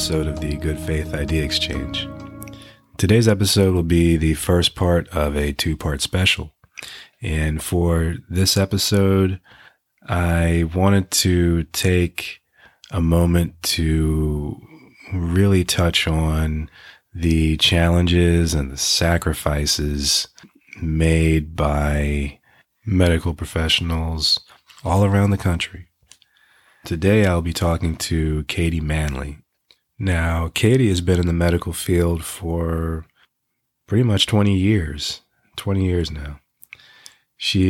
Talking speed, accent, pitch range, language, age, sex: 110 wpm, American, 80-95 Hz, English, 30-49, male